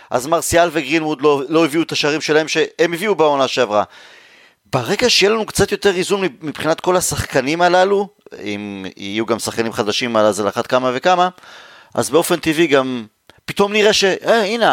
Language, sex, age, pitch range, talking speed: Hebrew, male, 30-49, 130-185 Hz, 165 wpm